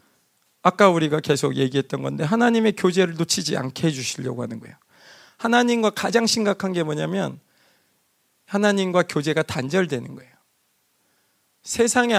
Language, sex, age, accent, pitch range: Korean, male, 40-59, native, 140-195 Hz